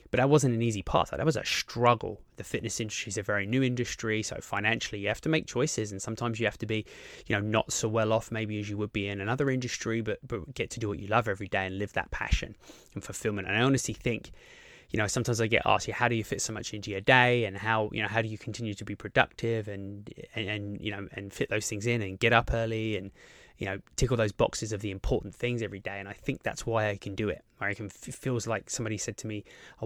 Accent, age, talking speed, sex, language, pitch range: British, 20-39, 275 wpm, male, English, 105-120 Hz